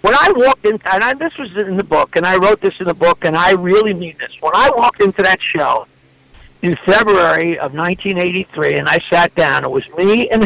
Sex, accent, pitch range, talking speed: male, American, 195-265 Hz, 235 wpm